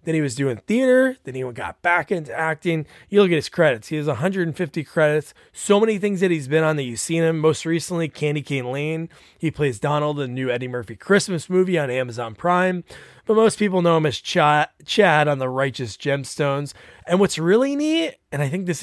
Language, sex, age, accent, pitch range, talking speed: English, male, 20-39, American, 140-200 Hz, 215 wpm